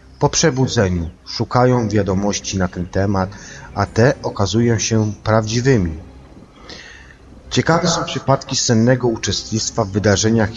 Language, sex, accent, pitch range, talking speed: Polish, male, native, 90-120 Hz, 110 wpm